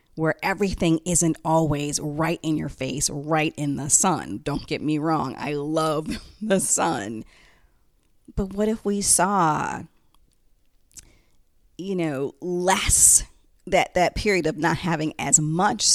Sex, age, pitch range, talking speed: female, 30-49, 145-185 Hz, 135 wpm